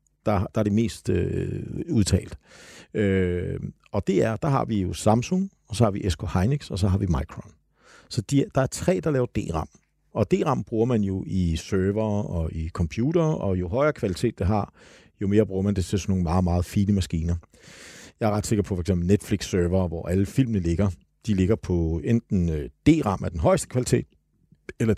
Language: Danish